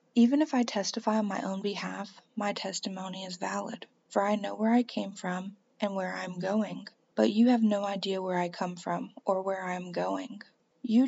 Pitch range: 195-230 Hz